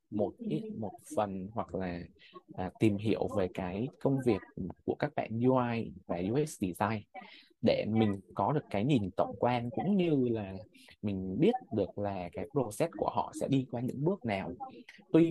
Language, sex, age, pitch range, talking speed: Vietnamese, male, 20-39, 100-150 Hz, 180 wpm